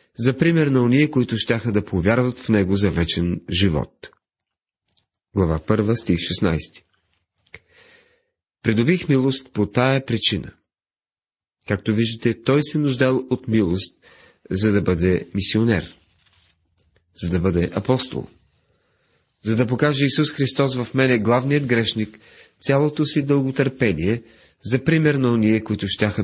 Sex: male